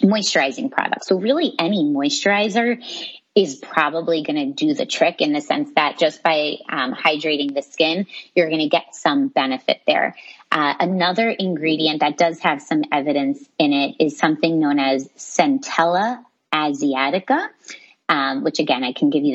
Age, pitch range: 30-49, 155-245 Hz